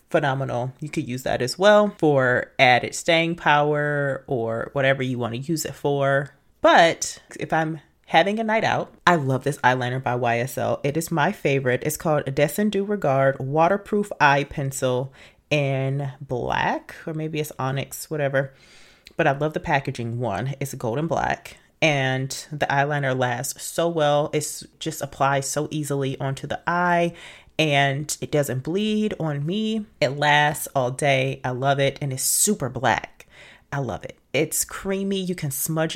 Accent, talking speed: American, 165 wpm